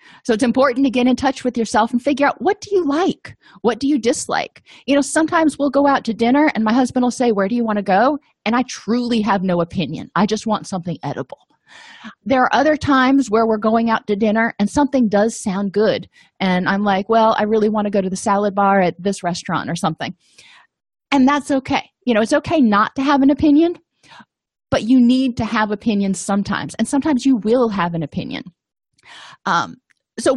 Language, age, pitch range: English, 30-49, 195-260 Hz